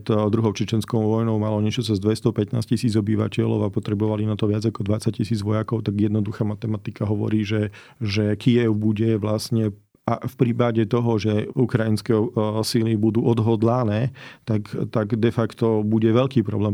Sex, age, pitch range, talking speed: male, 40-59, 110-115 Hz, 160 wpm